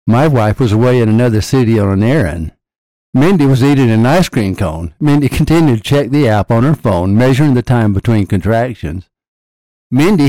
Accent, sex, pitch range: American, male, 110-140 Hz